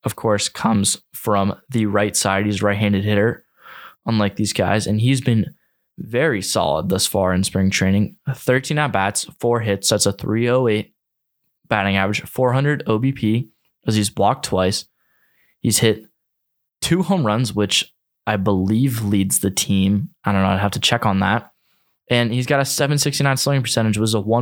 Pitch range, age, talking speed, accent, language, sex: 100-130 Hz, 20-39, 165 wpm, American, English, male